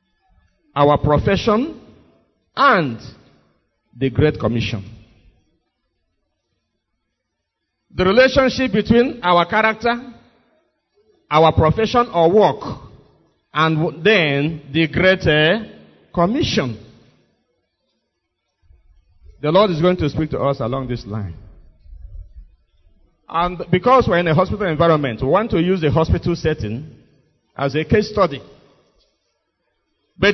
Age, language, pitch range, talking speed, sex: 50-69, English, 120-200 Hz, 100 wpm, male